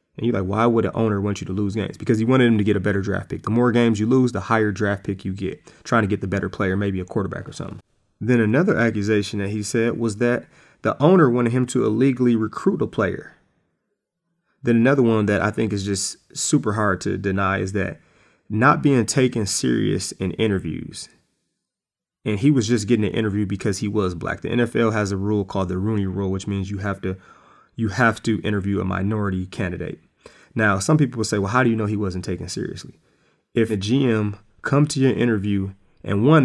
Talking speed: 225 wpm